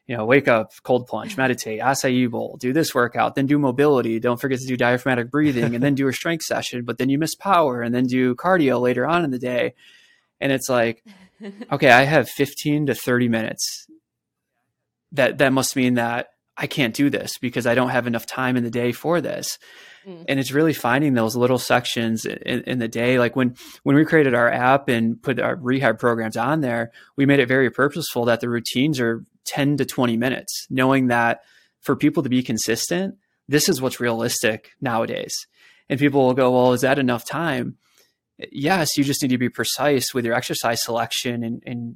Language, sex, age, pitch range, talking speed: English, male, 20-39, 120-140 Hz, 205 wpm